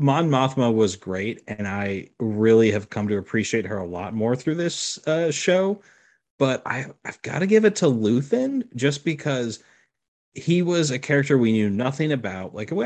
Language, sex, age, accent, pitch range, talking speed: English, male, 30-49, American, 105-145 Hz, 185 wpm